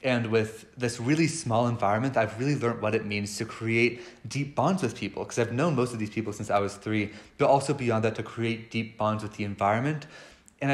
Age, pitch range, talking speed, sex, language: 30-49, 105-130 Hz, 230 wpm, male, English